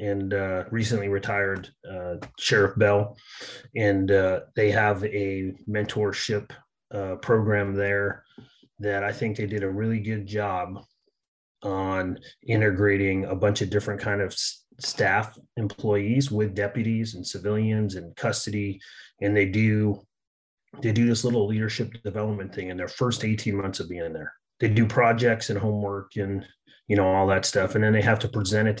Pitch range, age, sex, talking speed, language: 100-115 Hz, 30-49, male, 165 wpm, English